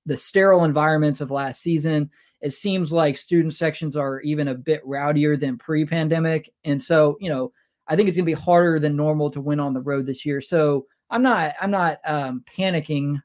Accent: American